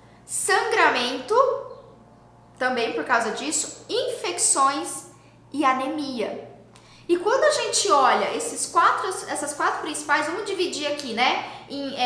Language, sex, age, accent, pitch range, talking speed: Portuguese, female, 10-29, Brazilian, 260-340 Hz, 115 wpm